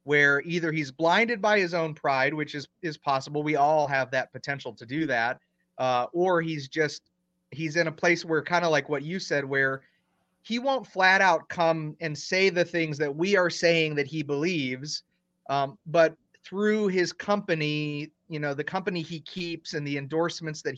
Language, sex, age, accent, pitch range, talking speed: English, male, 30-49, American, 145-180 Hz, 195 wpm